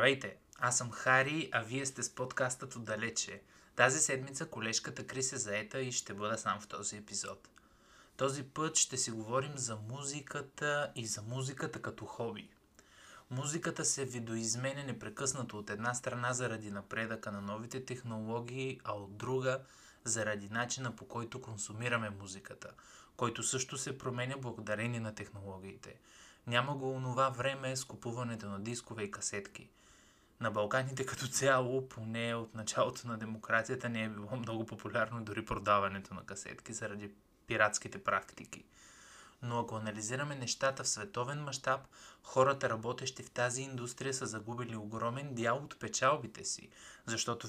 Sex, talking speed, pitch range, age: male, 145 wpm, 110-130 Hz, 20-39